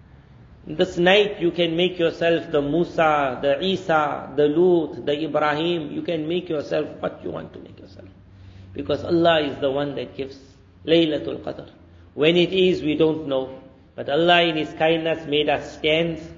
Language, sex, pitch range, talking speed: Romanian, male, 145-175 Hz, 170 wpm